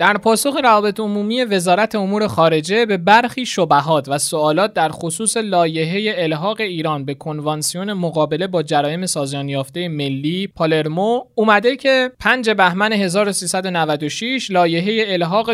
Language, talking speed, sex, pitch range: Persian, 125 wpm, male, 160-215 Hz